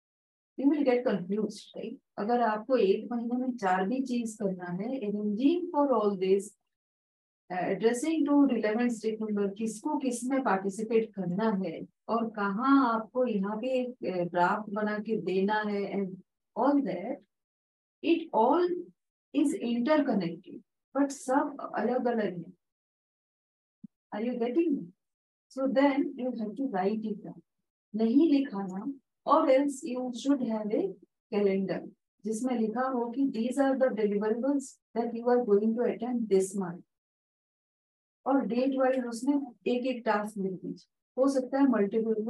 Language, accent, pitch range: English, Indian, 205-265 Hz